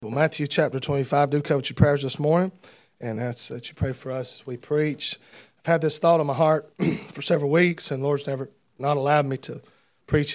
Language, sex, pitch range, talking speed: English, male, 135-155 Hz, 230 wpm